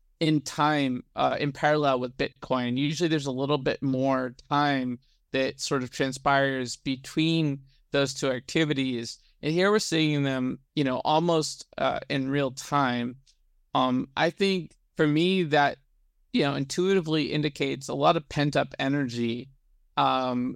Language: English